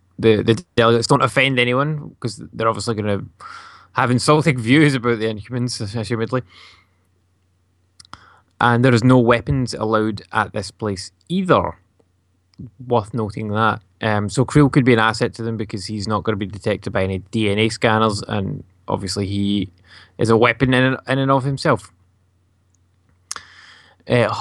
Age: 10-29